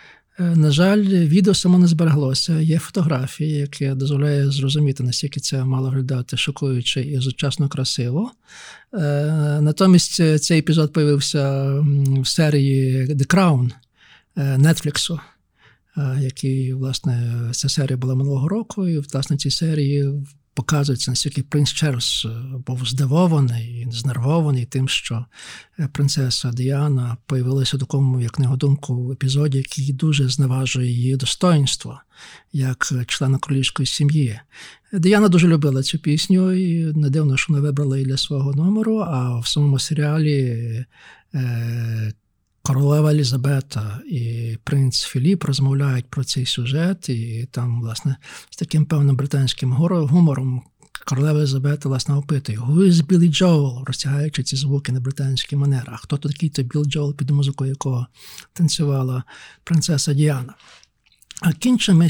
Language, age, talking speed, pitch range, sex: Ukrainian, 50-69, 125 wpm, 130-155 Hz, male